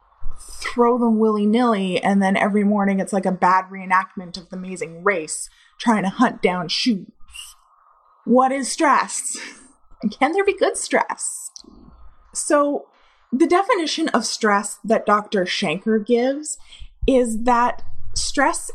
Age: 20-39